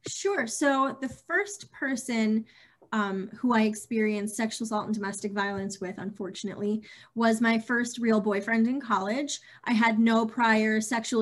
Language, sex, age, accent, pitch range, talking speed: English, female, 20-39, American, 205-240 Hz, 150 wpm